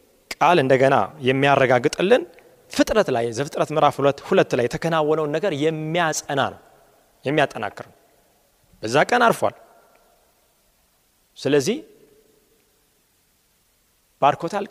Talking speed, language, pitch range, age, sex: 80 wpm, Amharic, 140-210 Hz, 30-49, male